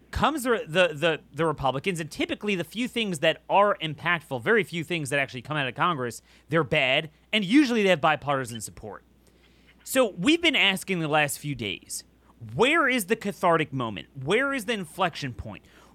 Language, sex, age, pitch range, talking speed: English, male, 30-49, 150-225 Hz, 185 wpm